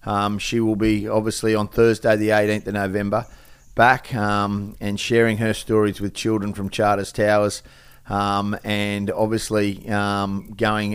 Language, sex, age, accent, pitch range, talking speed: English, male, 40-59, Australian, 95-110 Hz, 150 wpm